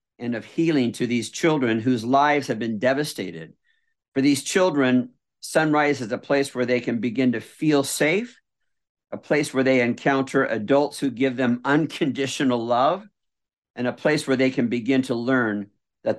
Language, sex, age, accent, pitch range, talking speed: English, male, 50-69, American, 120-145 Hz, 170 wpm